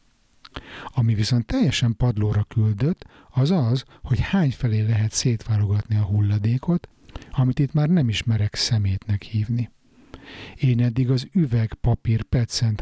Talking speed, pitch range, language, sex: 125 wpm, 105-130 Hz, Hungarian, male